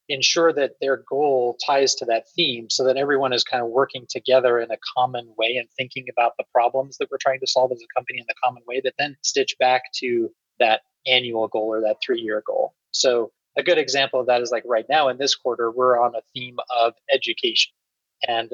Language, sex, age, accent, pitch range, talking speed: English, male, 20-39, American, 125-155 Hz, 225 wpm